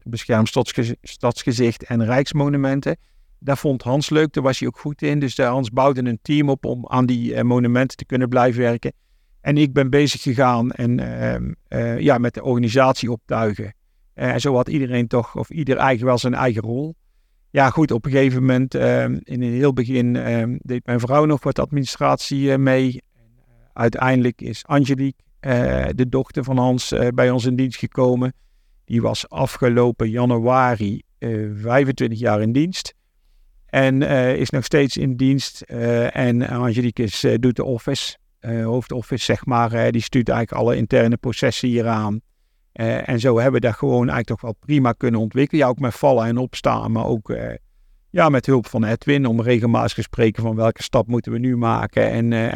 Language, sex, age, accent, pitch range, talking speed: Dutch, male, 50-69, Dutch, 115-135 Hz, 190 wpm